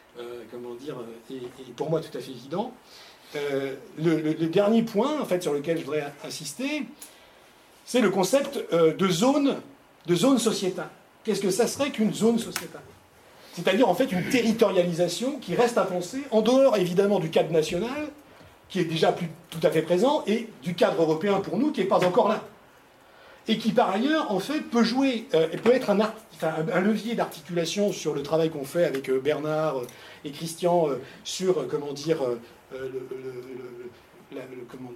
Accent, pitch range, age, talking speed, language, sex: French, 145-205 Hz, 50-69, 175 wpm, French, male